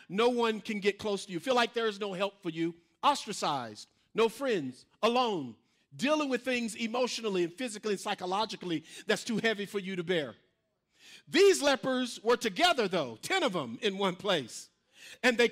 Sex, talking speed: male, 180 wpm